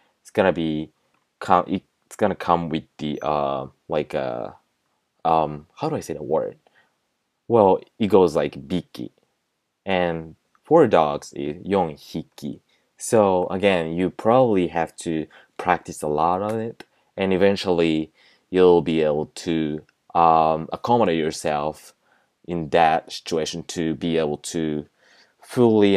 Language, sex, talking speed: English, male, 125 wpm